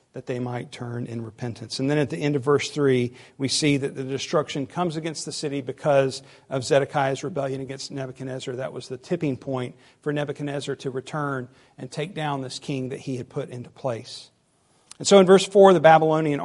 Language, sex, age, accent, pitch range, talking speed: English, male, 50-69, American, 135-155 Hz, 205 wpm